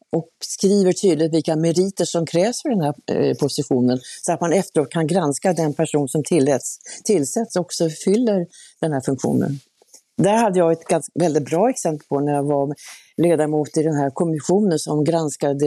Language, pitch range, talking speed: Swedish, 145-170 Hz, 180 wpm